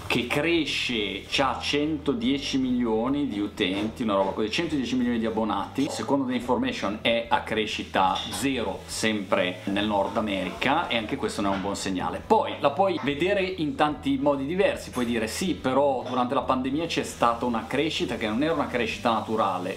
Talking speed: 175 wpm